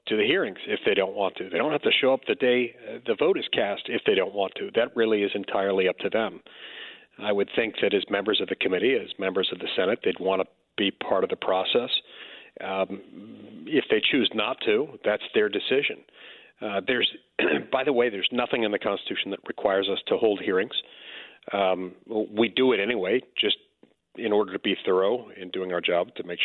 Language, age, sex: English, 40-59, male